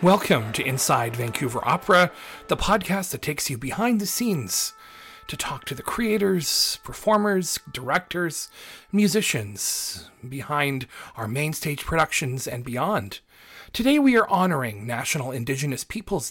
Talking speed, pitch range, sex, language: 130 wpm, 135-210 Hz, male, English